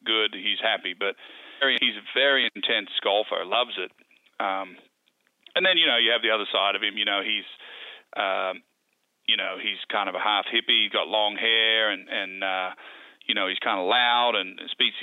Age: 40-59